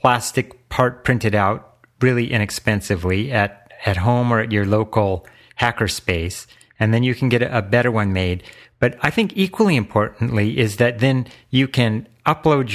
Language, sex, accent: English, male, American